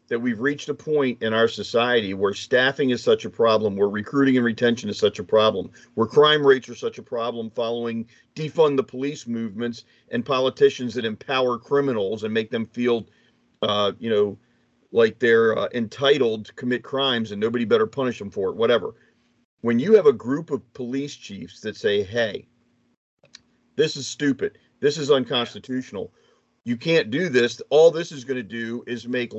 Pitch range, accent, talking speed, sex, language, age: 115-165 Hz, American, 185 wpm, male, English, 40-59